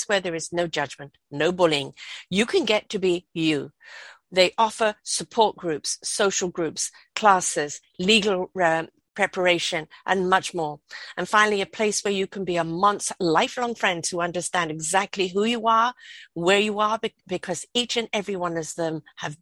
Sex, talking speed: female, 175 wpm